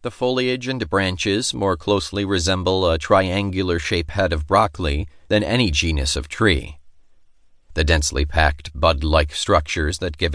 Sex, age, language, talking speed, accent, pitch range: male, 40-59, English, 140 wpm, American, 80-100 Hz